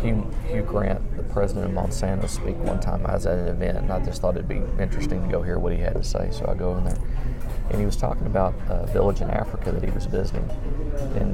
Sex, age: male, 40-59